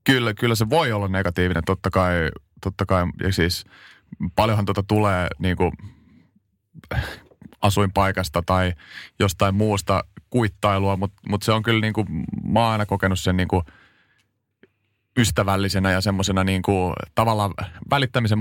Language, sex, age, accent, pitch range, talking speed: Finnish, male, 30-49, native, 95-105 Hz, 125 wpm